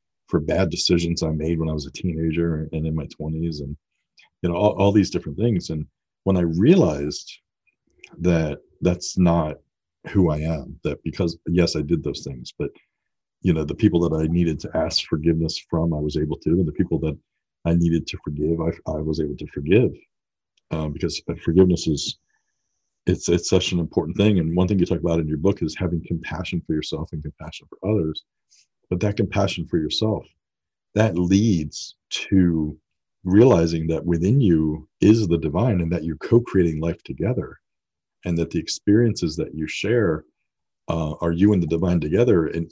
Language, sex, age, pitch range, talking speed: English, male, 40-59, 80-95 Hz, 185 wpm